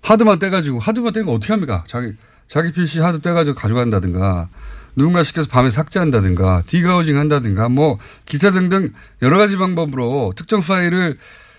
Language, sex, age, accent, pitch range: Korean, male, 30-49, native, 110-180 Hz